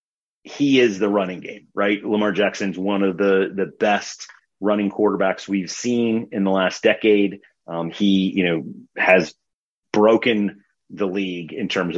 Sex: male